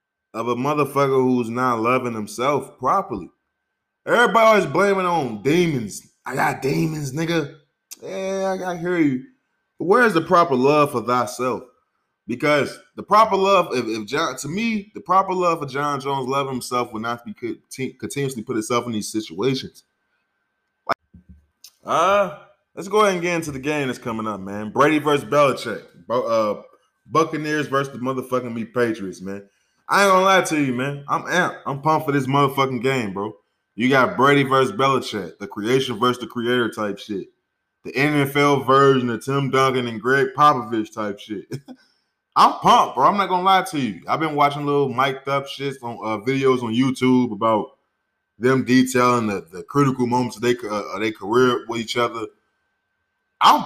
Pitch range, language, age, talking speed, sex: 120-155 Hz, English, 20-39, 175 wpm, male